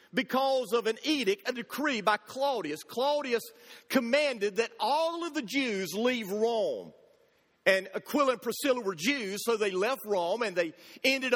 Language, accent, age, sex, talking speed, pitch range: English, American, 40-59, male, 160 wpm, 225-295 Hz